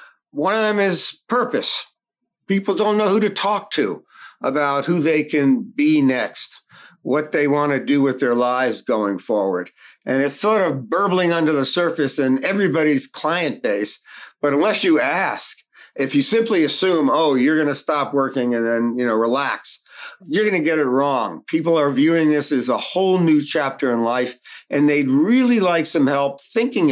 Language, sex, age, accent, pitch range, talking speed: English, male, 50-69, American, 130-185 Hz, 185 wpm